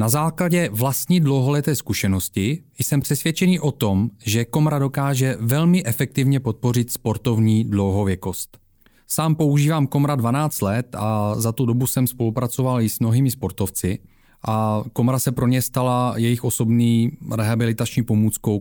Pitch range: 110-145 Hz